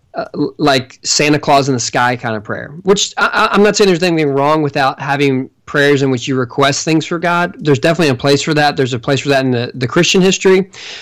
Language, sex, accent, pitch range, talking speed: English, male, American, 135-165 Hz, 240 wpm